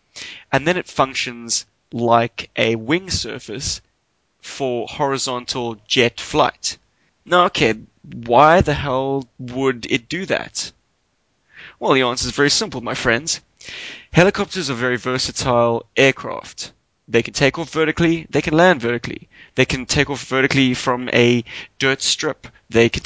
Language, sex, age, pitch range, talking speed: English, male, 20-39, 115-135 Hz, 140 wpm